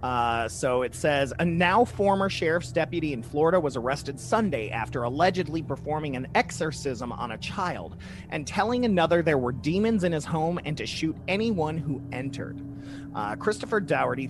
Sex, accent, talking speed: male, American, 170 wpm